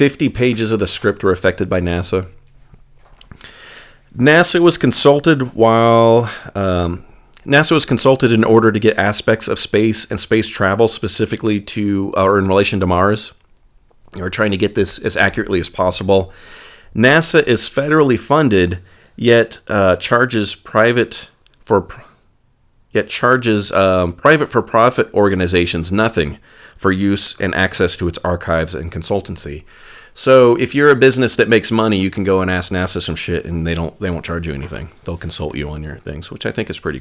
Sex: male